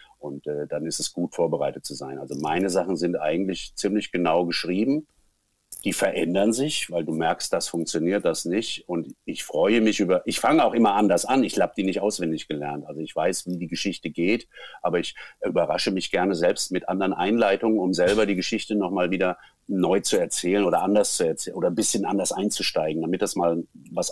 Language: German